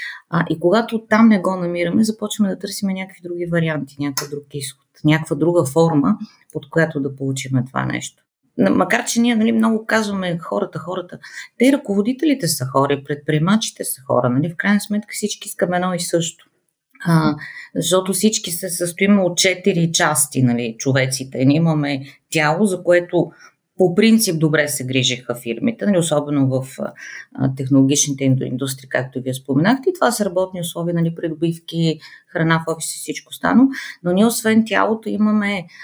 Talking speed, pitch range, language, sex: 155 wpm, 145-200 Hz, Bulgarian, female